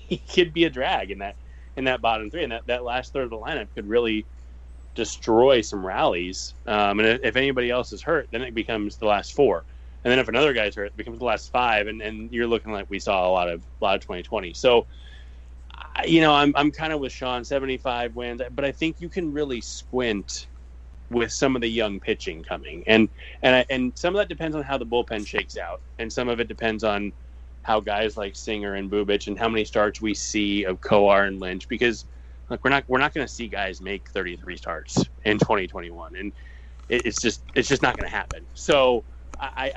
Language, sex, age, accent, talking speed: English, male, 20-39, American, 230 wpm